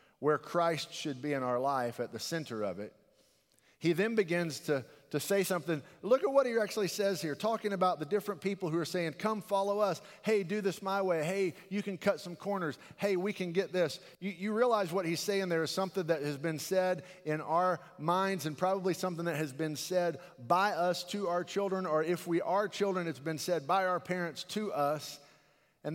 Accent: American